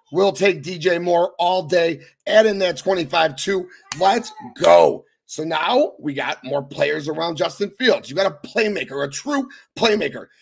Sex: male